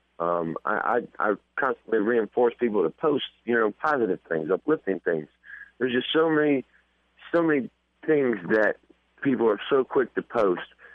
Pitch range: 85-135 Hz